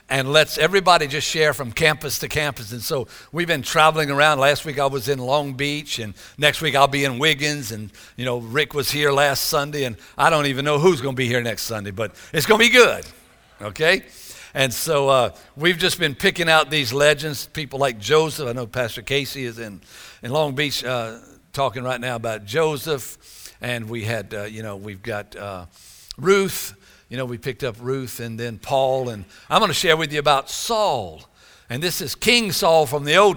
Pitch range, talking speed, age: 125-155 Hz, 215 wpm, 60-79